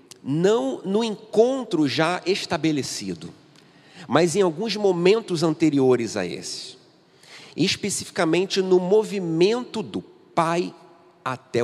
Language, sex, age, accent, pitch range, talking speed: Portuguese, male, 40-59, Brazilian, 120-170 Hz, 95 wpm